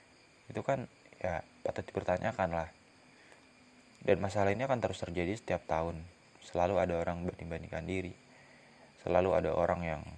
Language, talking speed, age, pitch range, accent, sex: Indonesian, 135 wpm, 20-39, 85-105 Hz, native, male